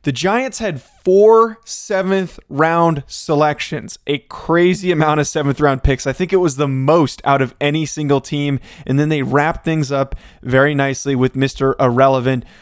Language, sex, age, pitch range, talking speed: English, male, 20-39, 135-160 Hz, 160 wpm